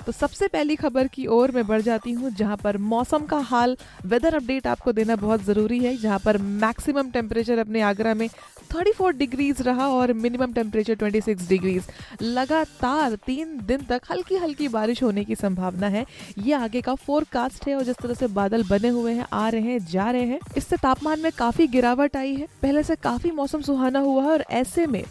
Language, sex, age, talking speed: Hindi, female, 20-39, 190 wpm